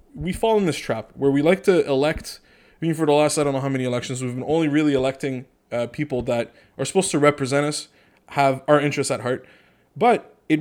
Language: English